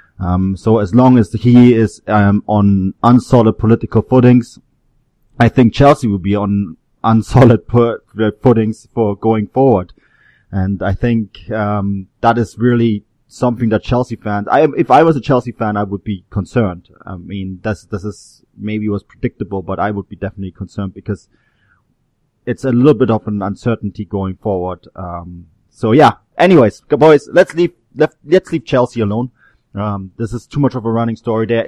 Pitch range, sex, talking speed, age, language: 100-115 Hz, male, 175 wpm, 30-49, English